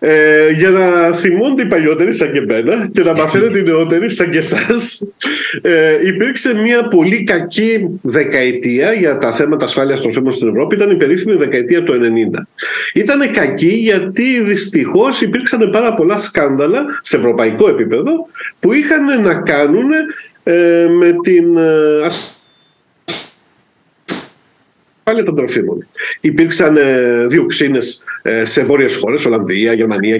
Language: Greek